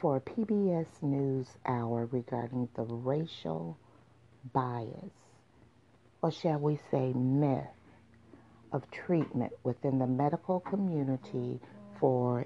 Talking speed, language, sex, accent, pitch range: 100 wpm, English, female, American, 120-160 Hz